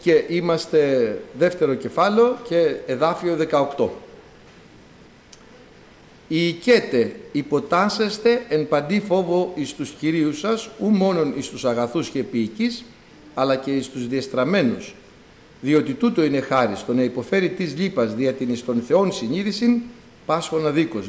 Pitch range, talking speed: 130-210 Hz, 130 wpm